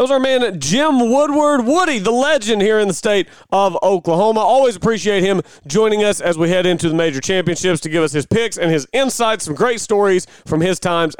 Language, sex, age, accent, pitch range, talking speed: English, male, 30-49, American, 170-225 Hz, 220 wpm